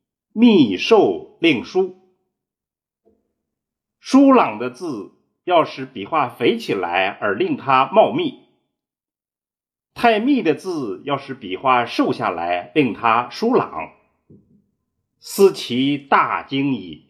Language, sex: Chinese, male